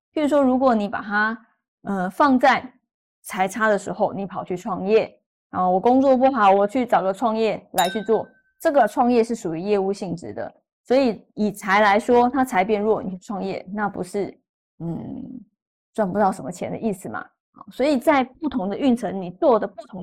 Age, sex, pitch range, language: 20-39, female, 200-260 Hz, Chinese